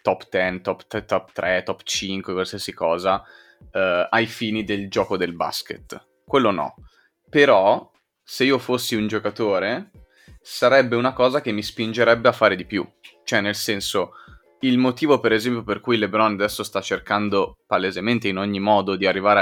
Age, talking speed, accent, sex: 20-39, 165 wpm, native, male